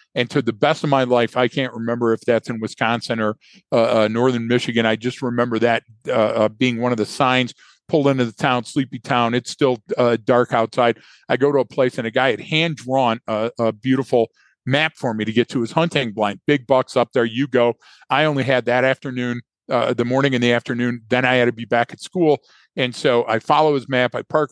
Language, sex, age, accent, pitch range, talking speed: English, male, 50-69, American, 115-135 Hz, 235 wpm